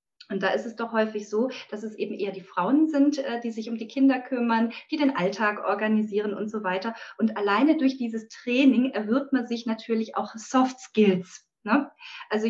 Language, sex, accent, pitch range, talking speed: German, female, German, 200-245 Hz, 190 wpm